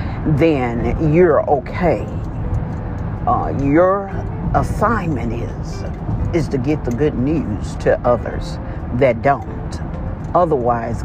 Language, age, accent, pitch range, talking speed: English, 50-69, American, 100-140 Hz, 100 wpm